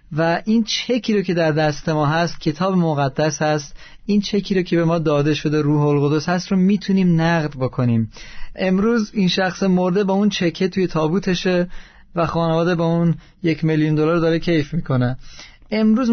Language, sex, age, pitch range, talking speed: Persian, male, 30-49, 150-185 Hz, 170 wpm